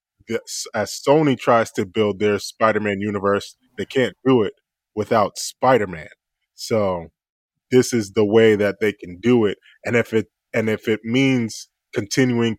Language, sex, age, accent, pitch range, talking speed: English, male, 10-29, American, 100-120 Hz, 155 wpm